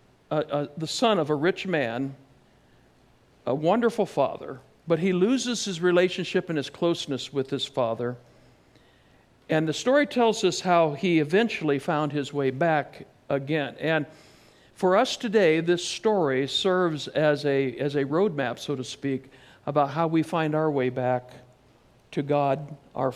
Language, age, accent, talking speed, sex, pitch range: English, 60-79, American, 155 wpm, male, 135-175 Hz